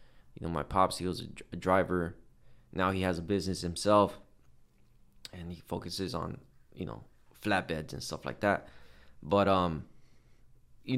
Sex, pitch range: male, 85-105 Hz